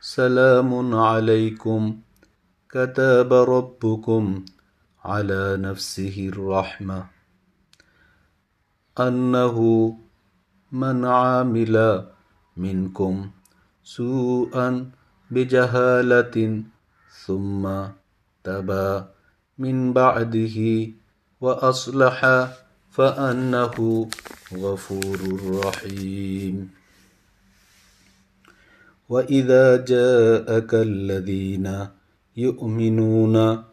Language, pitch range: Bengali, 95-125 Hz